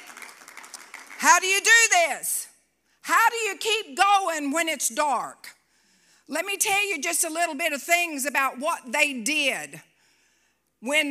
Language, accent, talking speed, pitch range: English, American, 150 wpm, 275-345 Hz